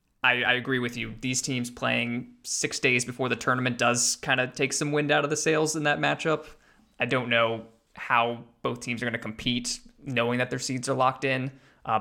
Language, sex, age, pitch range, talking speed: English, male, 20-39, 115-130 Hz, 215 wpm